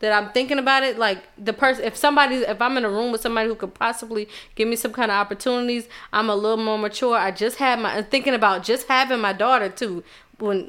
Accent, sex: American, female